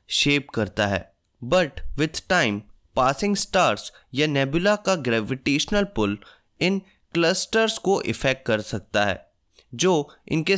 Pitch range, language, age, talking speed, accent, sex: 115-180 Hz, Hindi, 20-39, 125 wpm, native, male